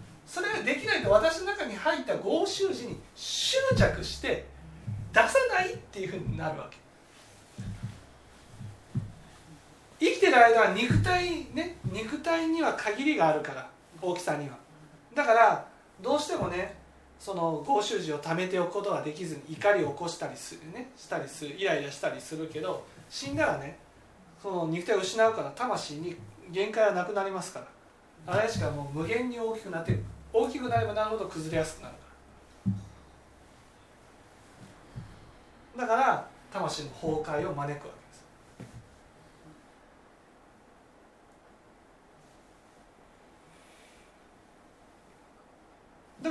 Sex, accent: male, native